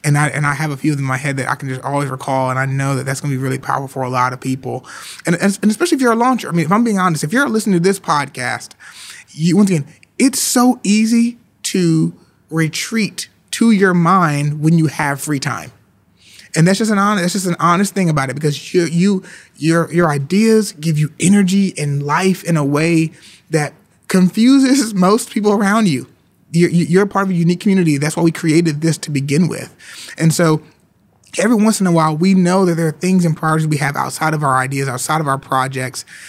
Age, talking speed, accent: 30-49, 230 wpm, American